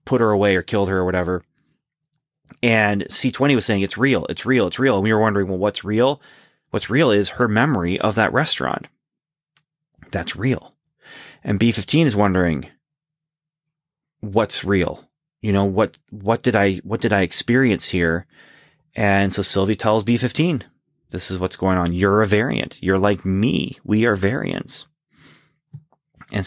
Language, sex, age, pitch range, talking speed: English, male, 30-49, 95-145 Hz, 155 wpm